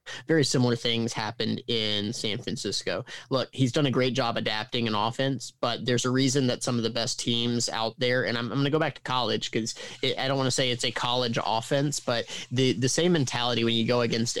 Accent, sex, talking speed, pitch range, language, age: American, male, 225 wpm, 115-140 Hz, English, 20-39